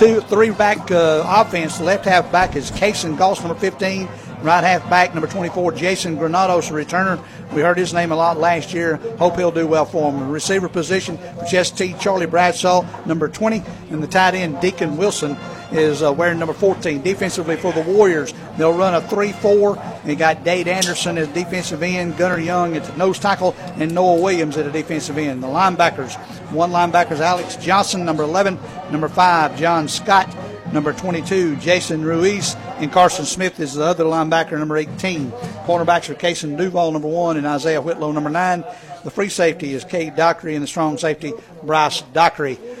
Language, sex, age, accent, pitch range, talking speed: English, male, 50-69, American, 155-180 Hz, 185 wpm